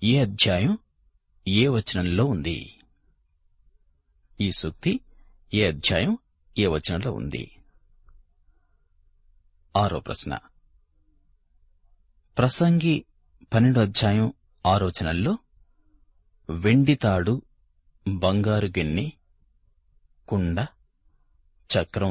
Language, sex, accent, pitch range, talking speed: Telugu, male, native, 75-100 Hz, 50 wpm